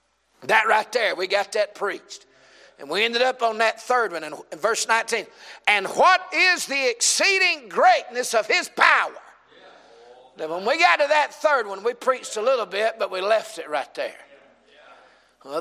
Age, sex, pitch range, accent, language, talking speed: 50-69, male, 200-320 Hz, American, English, 180 wpm